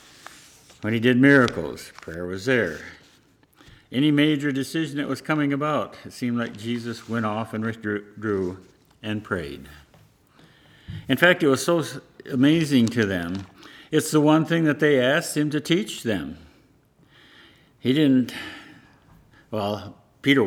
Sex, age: male, 60-79